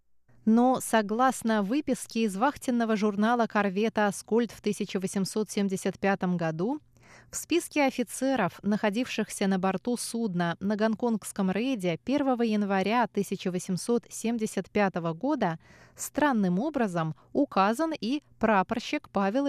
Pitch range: 185-235 Hz